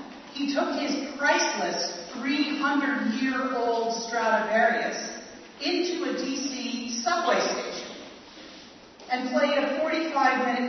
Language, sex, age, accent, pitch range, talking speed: English, female, 40-59, American, 250-310 Hz, 85 wpm